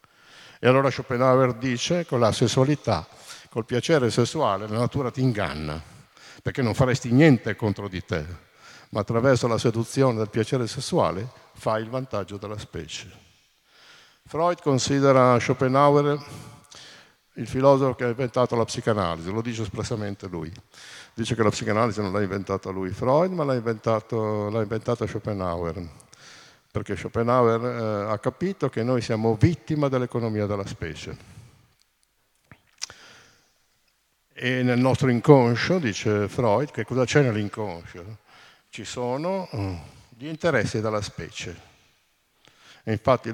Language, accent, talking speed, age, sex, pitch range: Italian, native, 125 wpm, 50-69, male, 105-130 Hz